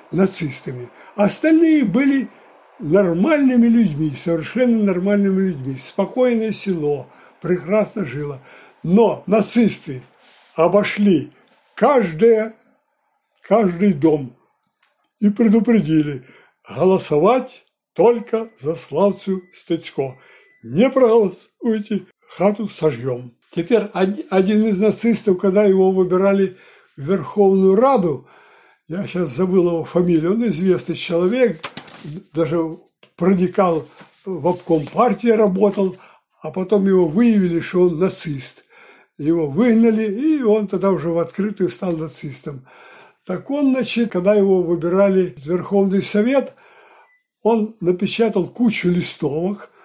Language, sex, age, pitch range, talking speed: Russian, male, 60-79, 170-220 Hz, 100 wpm